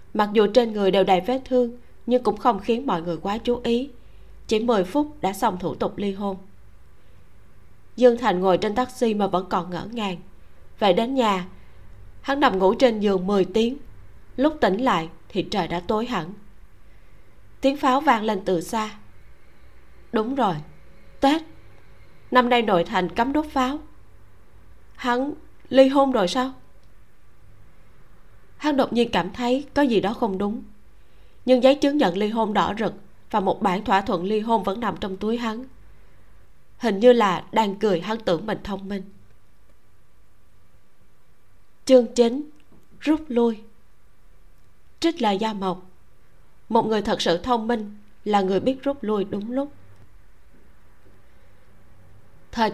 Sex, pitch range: female, 180-250 Hz